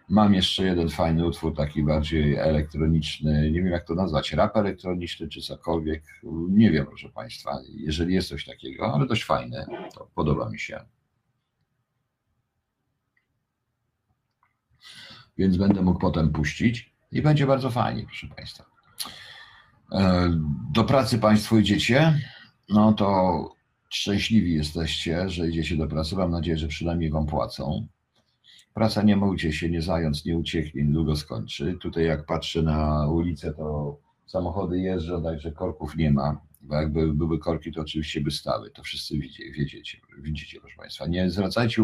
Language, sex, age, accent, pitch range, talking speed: Polish, male, 50-69, native, 80-95 Hz, 145 wpm